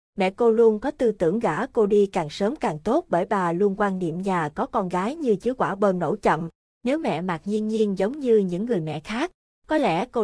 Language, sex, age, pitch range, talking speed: Vietnamese, female, 20-39, 185-230 Hz, 245 wpm